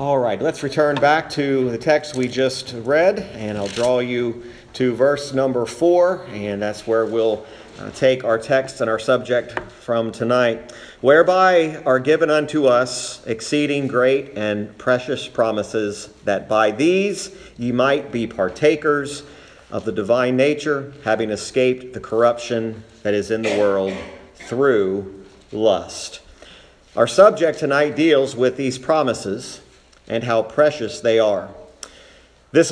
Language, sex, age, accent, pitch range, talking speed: English, male, 40-59, American, 115-145 Hz, 140 wpm